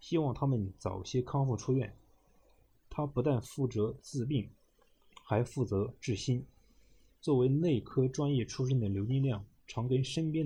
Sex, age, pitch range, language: male, 20-39, 105-140 Hz, Chinese